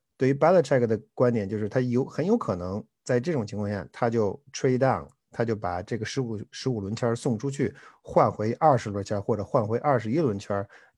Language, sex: Chinese, male